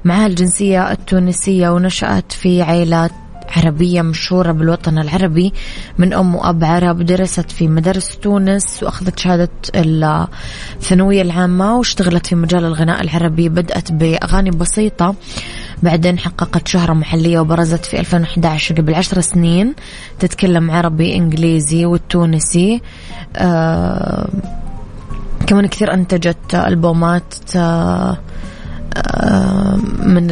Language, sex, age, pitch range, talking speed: Arabic, female, 20-39, 165-185 Hz, 95 wpm